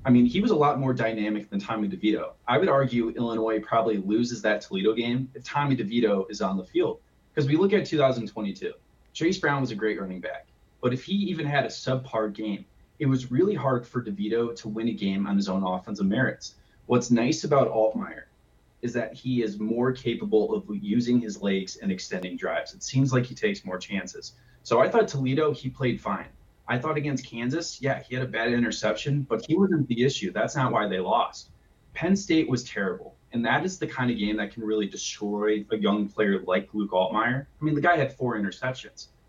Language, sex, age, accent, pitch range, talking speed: English, male, 30-49, American, 105-135 Hz, 215 wpm